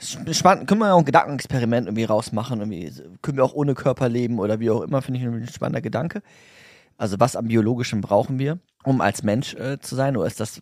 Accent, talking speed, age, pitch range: German, 220 wpm, 30-49, 115-140 Hz